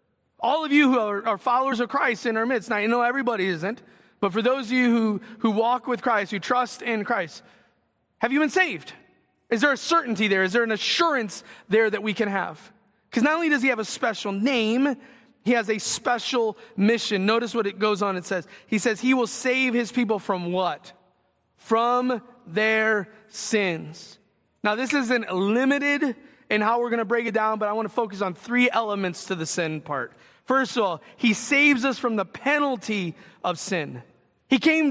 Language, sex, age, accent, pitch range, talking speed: English, male, 30-49, American, 190-245 Hz, 205 wpm